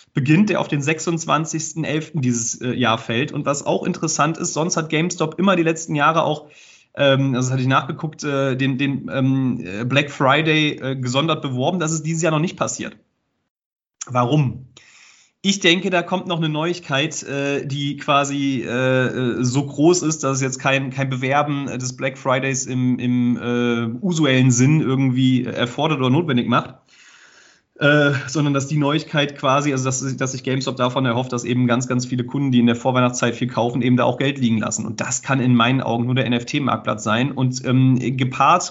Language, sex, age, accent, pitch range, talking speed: German, male, 30-49, German, 125-155 Hz, 185 wpm